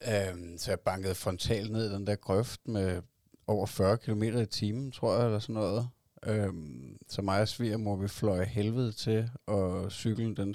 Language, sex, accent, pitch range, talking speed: Danish, male, native, 95-110 Hz, 175 wpm